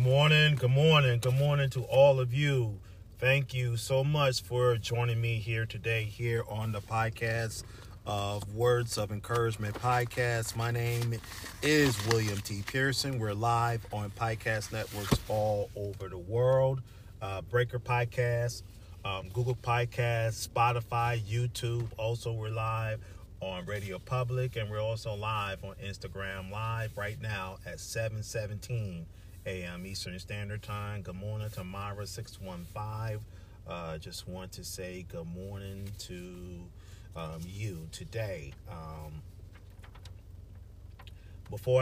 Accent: American